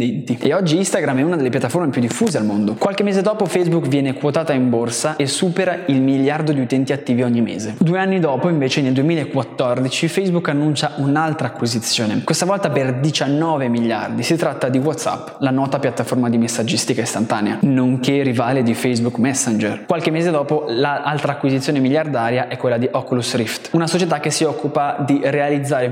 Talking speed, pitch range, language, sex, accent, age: 175 wpm, 125-160 Hz, Italian, male, native, 20-39